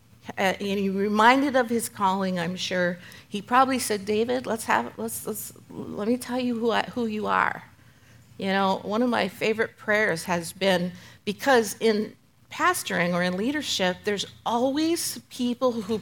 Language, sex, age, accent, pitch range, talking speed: English, female, 50-69, American, 180-250 Hz, 170 wpm